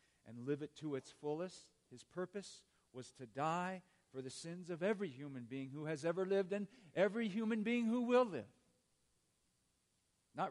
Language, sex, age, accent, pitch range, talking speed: English, male, 50-69, American, 125-175 Hz, 170 wpm